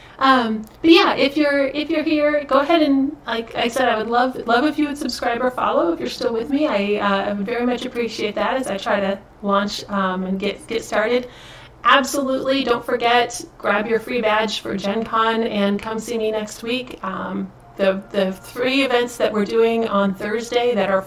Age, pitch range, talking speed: 30-49, 205-250 Hz, 210 wpm